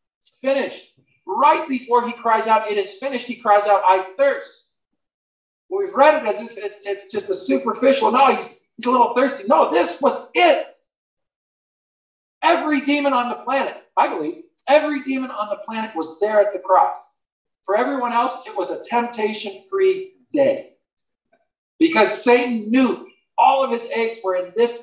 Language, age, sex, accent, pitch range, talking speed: English, 50-69, male, American, 195-280 Hz, 165 wpm